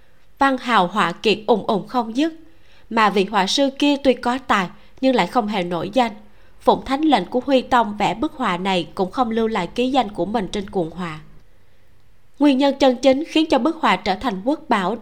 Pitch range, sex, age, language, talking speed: 195-260 Hz, female, 20-39, Vietnamese, 220 wpm